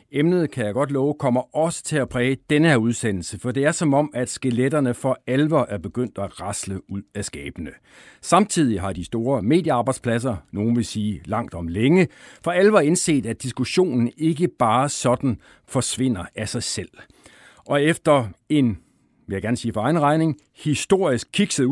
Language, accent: Danish, native